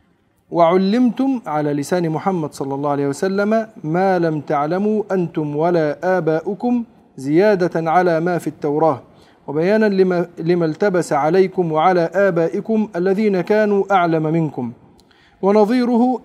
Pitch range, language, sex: 155-200 Hz, Arabic, male